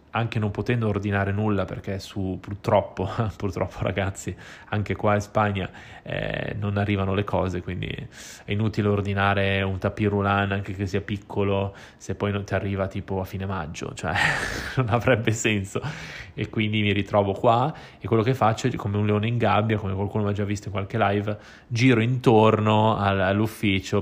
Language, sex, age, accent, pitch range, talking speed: Italian, male, 20-39, native, 95-110 Hz, 170 wpm